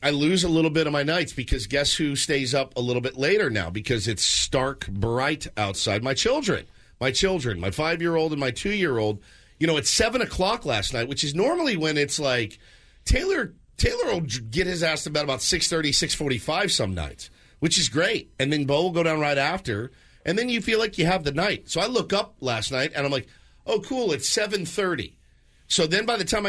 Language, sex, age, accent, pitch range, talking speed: English, male, 40-59, American, 110-160 Hz, 215 wpm